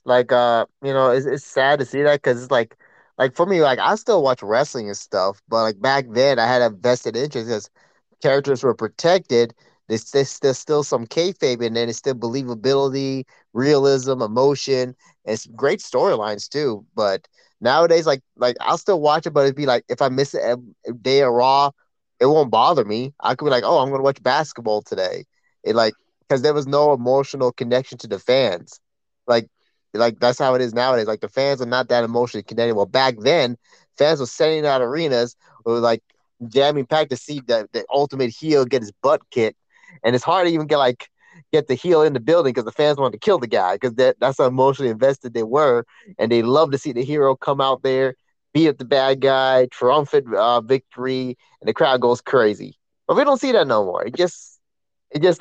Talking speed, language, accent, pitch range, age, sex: 215 wpm, English, American, 120-145 Hz, 20-39, male